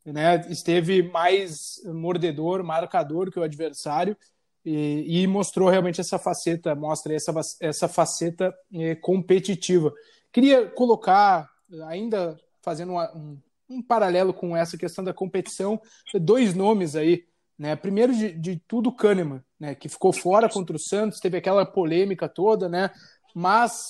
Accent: Brazilian